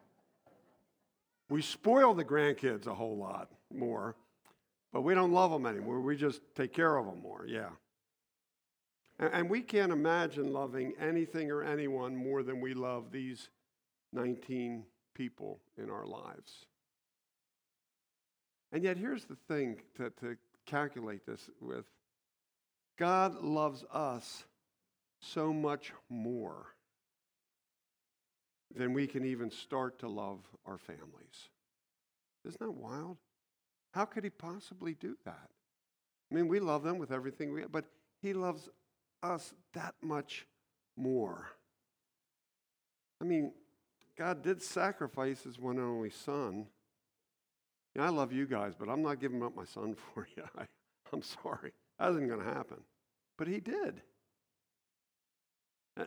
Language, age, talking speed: English, 50-69, 135 wpm